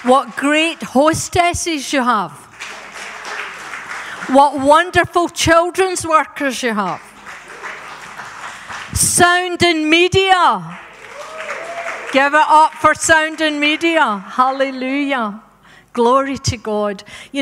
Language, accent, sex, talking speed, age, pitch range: English, British, female, 90 wpm, 50-69, 200-270 Hz